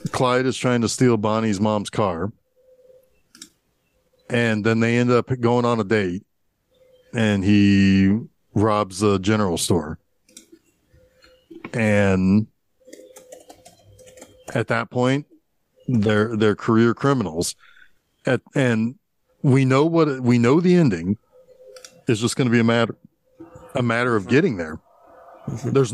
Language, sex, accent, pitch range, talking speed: English, male, American, 110-175 Hz, 125 wpm